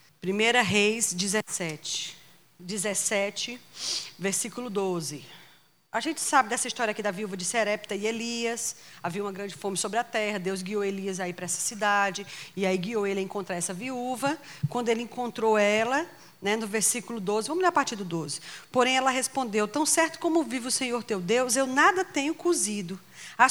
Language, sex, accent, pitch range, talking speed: Portuguese, female, Brazilian, 200-265 Hz, 180 wpm